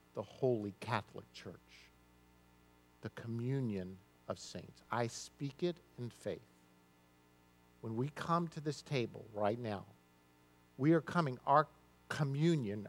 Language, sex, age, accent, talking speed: English, male, 50-69, American, 120 wpm